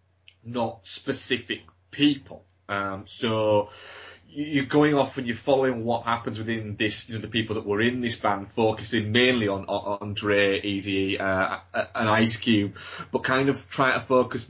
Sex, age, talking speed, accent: male, 20-39, 170 wpm, British